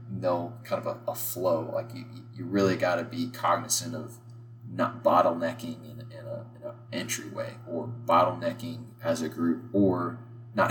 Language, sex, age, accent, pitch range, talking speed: English, male, 20-39, American, 105-120 Hz, 170 wpm